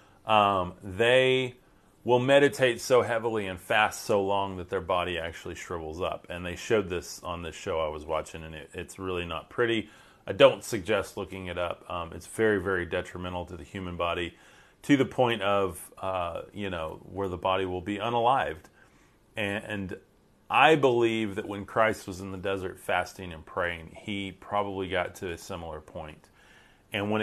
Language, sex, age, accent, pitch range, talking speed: English, male, 30-49, American, 90-110 Hz, 180 wpm